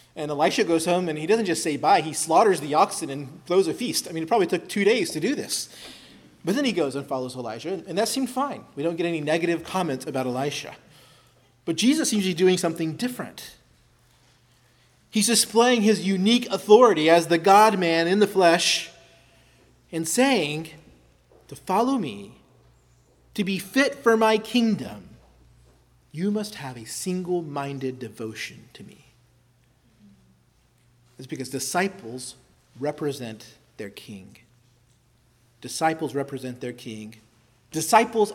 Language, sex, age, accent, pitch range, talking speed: English, male, 30-49, American, 125-195 Hz, 150 wpm